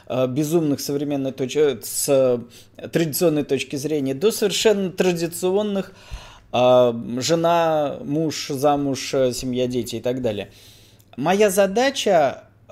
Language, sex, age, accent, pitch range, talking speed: Russian, male, 20-39, native, 130-185 Hz, 80 wpm